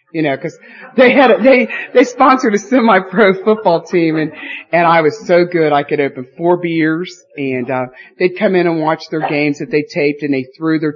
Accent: American